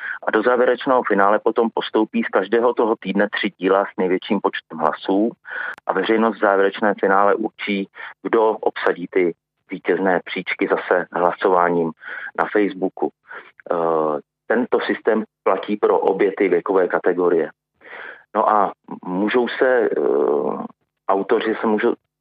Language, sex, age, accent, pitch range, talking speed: Czech, male, 40-59, native, 100-125 Hz, 125 wpm